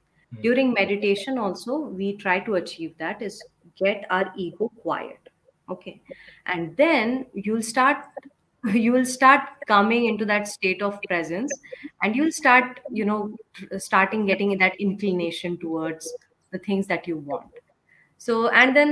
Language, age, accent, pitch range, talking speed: English, 30-49, Indian, 180-250 Hz, 145 wpm